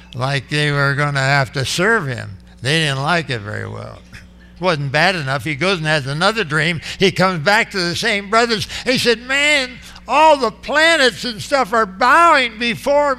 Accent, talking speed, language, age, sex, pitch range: American, 195 wpm, English, 60-79, male, 120-195 Hz